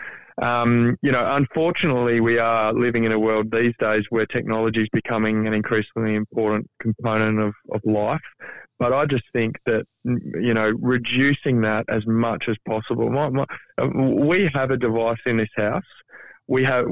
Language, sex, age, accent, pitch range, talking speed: English, male, 20-39, Australian, 105-115 Hz, 170 wpm